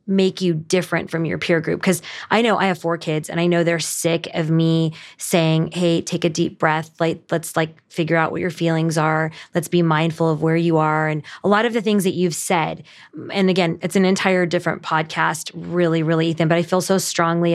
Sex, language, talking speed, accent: female, English, 230 wpm, American